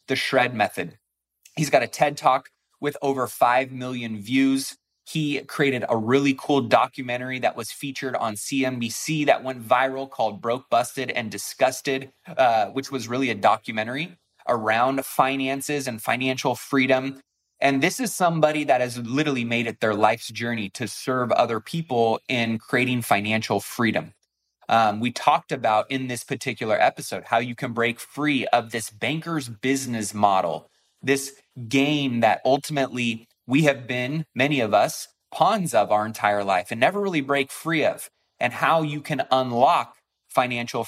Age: 20-39